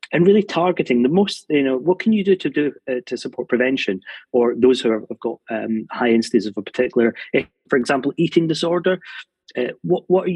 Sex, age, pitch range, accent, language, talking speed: male, 30-49, 110-130 Hz, British, English, 210 wpm